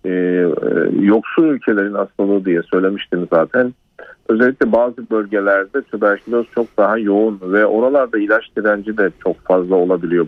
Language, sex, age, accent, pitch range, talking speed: Turkish, male, 50-69, native, 100-115 Hz, 130 wpm